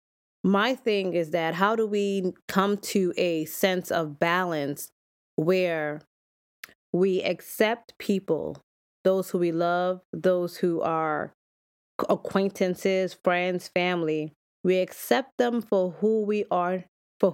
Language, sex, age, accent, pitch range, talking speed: English, female, 20-39, American, 160-195 Hz, 120 wpm